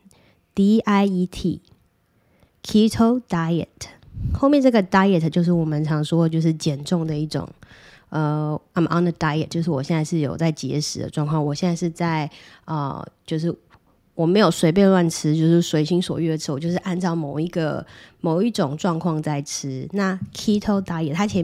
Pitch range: 150-185 Hz